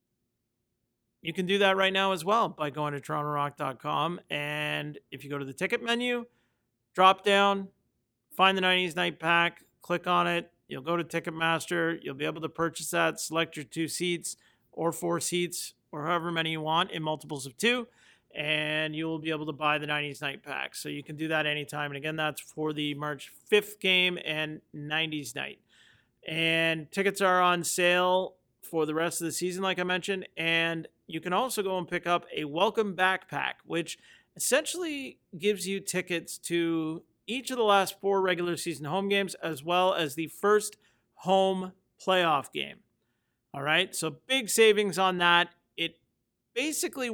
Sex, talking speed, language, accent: male, 180 wpm, English, American